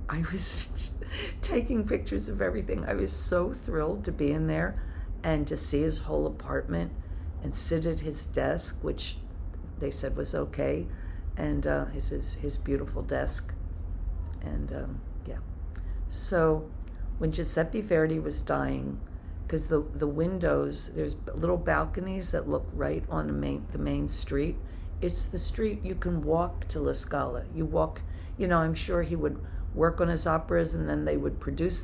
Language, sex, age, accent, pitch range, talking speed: English, female, 50-69, American, 75-85 Hz, 170 wpm